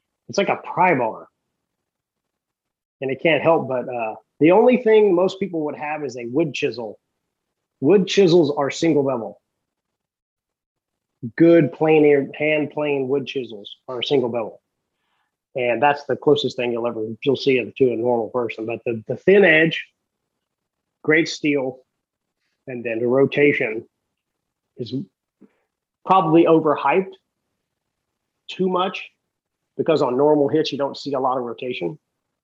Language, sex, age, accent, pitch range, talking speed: English, male, 30-49, American, 125-160 Hz, 140 wpm